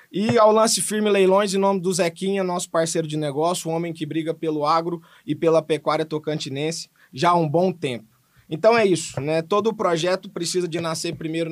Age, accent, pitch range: 20-39, Brazilian, 145-180 Hz